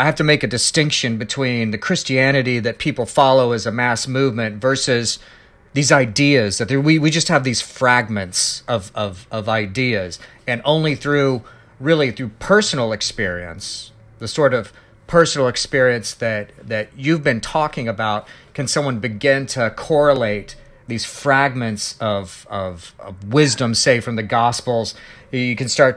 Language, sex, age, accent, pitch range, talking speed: English, male, 40-59, American, 110-135 Hz, 155 wpm